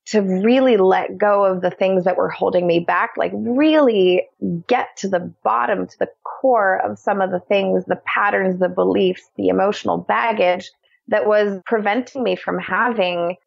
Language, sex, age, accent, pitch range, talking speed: English, female, 20-39, American, 180-230 Hz, 175 wpm